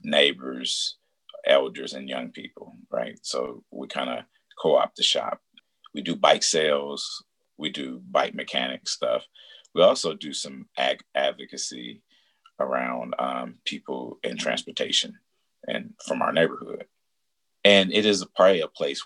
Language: English